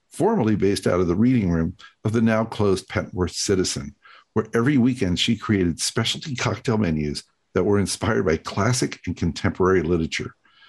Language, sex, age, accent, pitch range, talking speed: English, male, 50-69, American, 95-125 Hz, 155 wpm